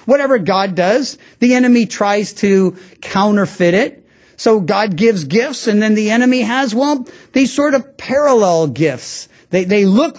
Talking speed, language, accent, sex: 160 wpm, English, American, male